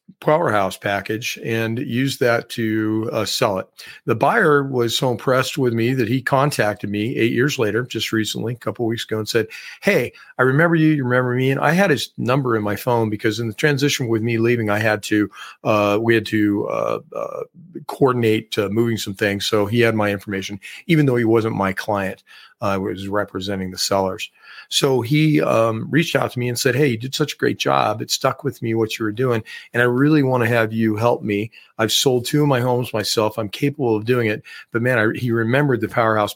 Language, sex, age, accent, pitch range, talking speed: English, male, 40-59, American, 110-130 Hz, 220 wpm